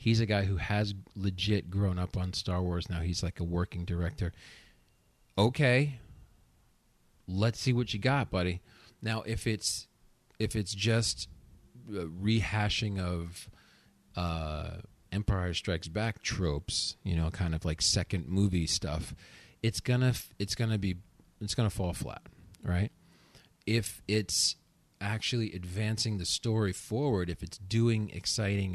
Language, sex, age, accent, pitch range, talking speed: English, male, 40-59, American, 90-110 Hz, 140 wpm